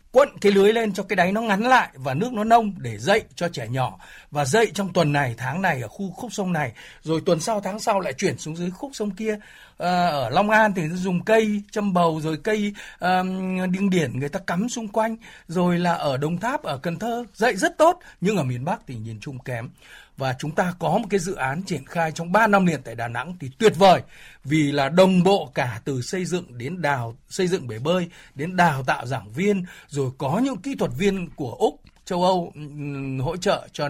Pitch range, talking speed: 145-205 Hz, 235 wpm